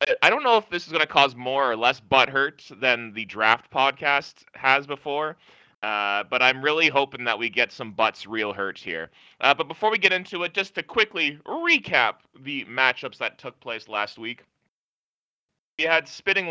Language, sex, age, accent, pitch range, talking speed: English, male, 30-49, American, 120-155 Hz, 195 wpm